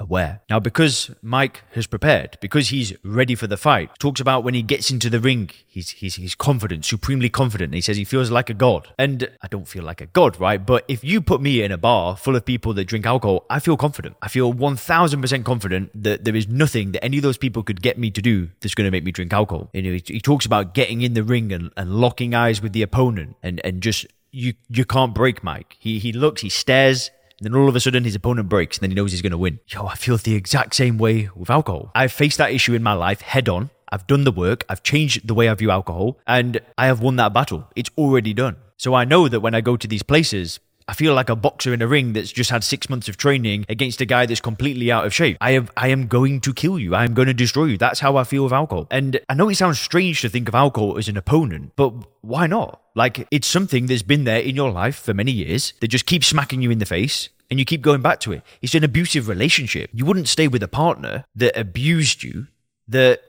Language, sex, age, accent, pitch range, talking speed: English, male, 20-39, British, 105-135 Hz, 265 wpm